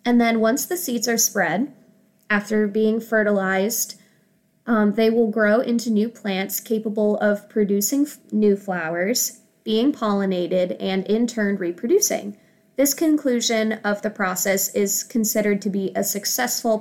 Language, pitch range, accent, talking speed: English, 190-220 Hz, American, 140 wpm